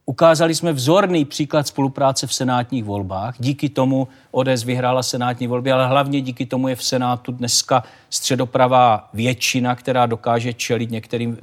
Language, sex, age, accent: Czech, male, 40-59, native